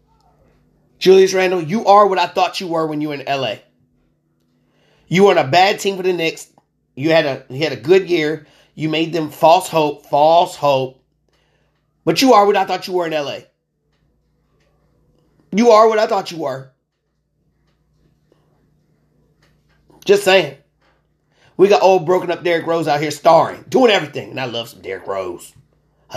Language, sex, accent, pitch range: English, male, American, 135-180 Hz